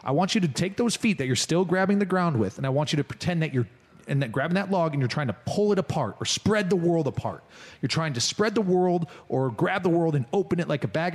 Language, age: English, 30-49